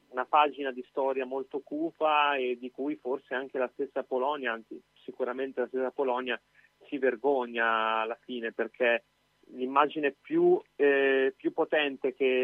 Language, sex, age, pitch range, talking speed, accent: Italian, male, 30-49, 125-140 Hz, 145 wpm, native